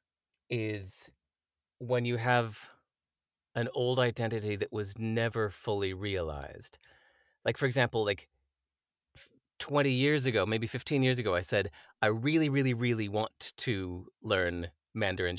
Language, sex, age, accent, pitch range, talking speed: English, male, 30-49, American, 105-135 Hz, 130 wpm